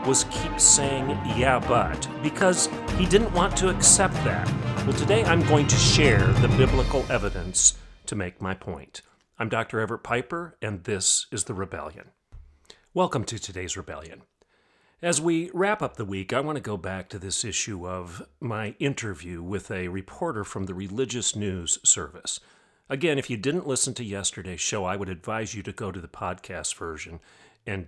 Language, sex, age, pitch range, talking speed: English, male, 40-59, 100-135 Hz, 175 wpm